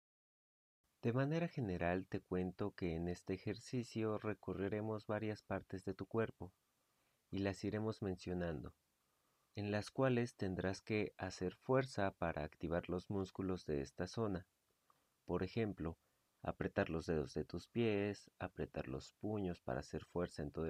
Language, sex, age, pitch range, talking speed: Spanish, male, 30-49, 85-110 Hz, 140 wpm